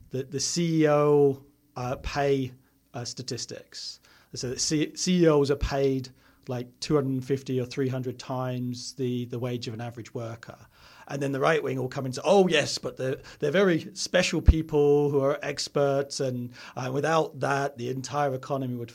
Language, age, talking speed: English, 40-59, 165 wpm